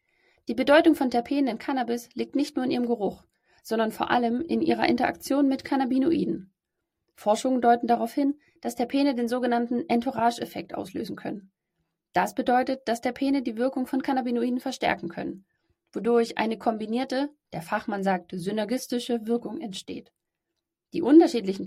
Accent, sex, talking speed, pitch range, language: German, female, 145 wpm, 230-265 Hz, German